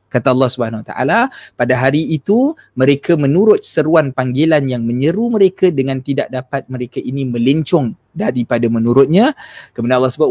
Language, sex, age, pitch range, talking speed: Malay, male, 20-39, 120-155 Hz, 145 wpm